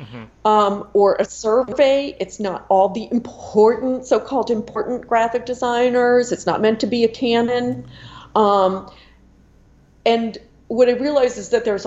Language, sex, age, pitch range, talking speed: English, female, 40-59, 190-235 Hz, 140 wpm